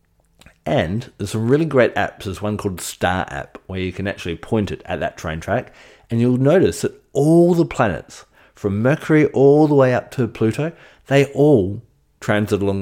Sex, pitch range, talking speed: male, 95-130 Hz, 185 wpm